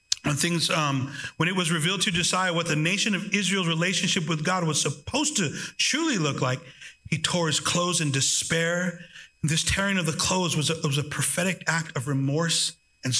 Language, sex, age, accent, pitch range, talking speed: English, male, 40-59, American, 155-200 Hz, 180 wpm